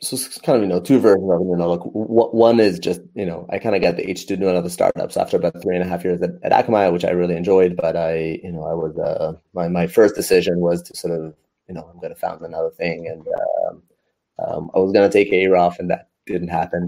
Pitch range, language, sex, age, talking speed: 85-115 Hz, English, male, 30-49, 275 wpm